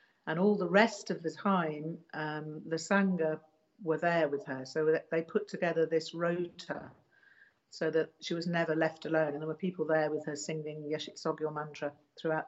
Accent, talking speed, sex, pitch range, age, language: British, 185 wpm, female, 155-175 Hz, 50-69, English